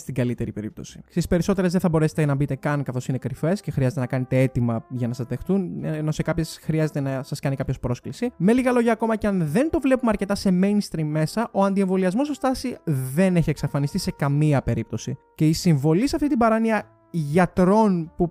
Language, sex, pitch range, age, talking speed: Greek, male, 155-205 Hz, 20-39, 210 wpm